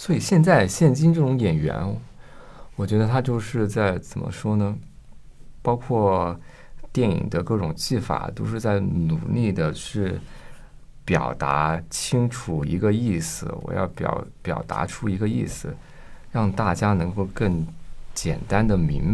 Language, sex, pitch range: Chinese, male, 80-105 Hz